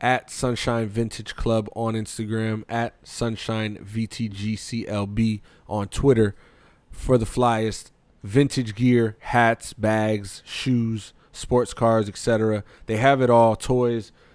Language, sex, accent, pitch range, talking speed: English, male, American, 110-130 Hz, 135 wpm